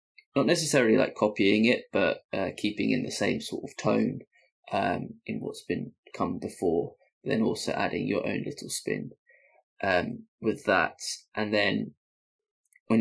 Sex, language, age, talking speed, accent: male, English, 20-39, 150 wpm, British